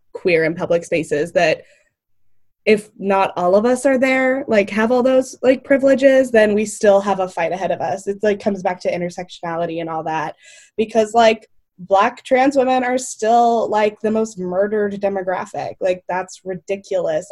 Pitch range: 180-230 Hz